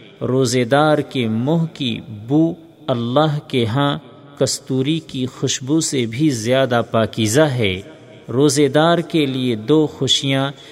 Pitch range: 125-160 Hz